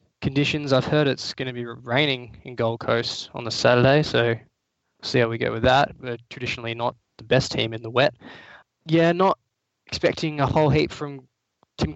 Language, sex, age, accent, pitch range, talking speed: English, male, 10-29, Australian, 120-140 Hz, 190 wpm